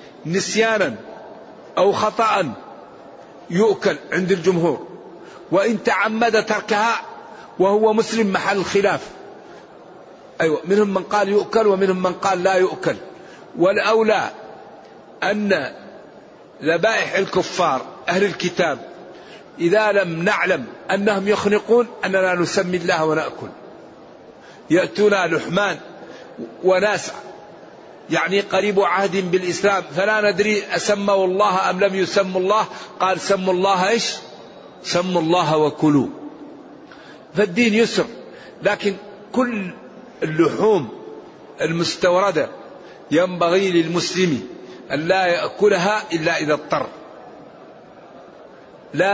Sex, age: male, 50-69